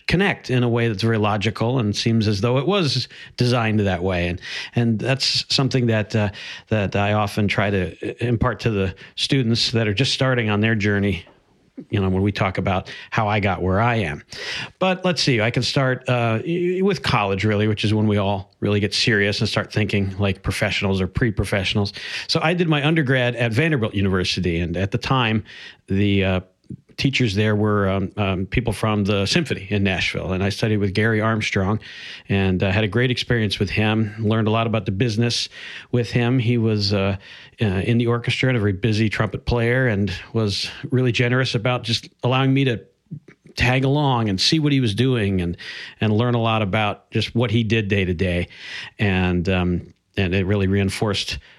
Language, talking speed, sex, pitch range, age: English, 200 wpm, male, 100-125 Hz, 50-69